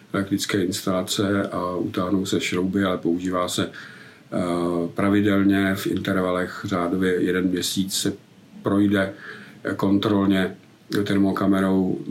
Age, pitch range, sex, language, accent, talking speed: 50-69, 95-105 Hz, male, Czech, native, 95 wpm